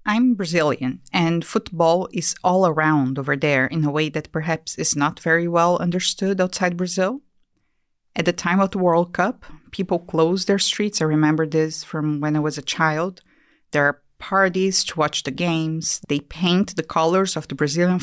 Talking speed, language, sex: 185 wpm, English, female